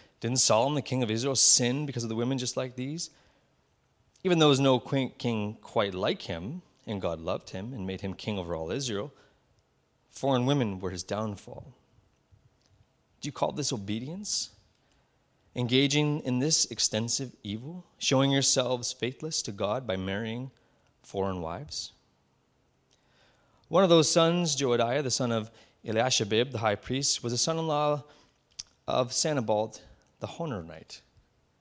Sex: male